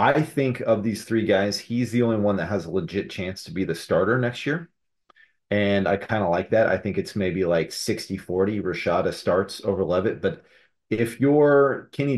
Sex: male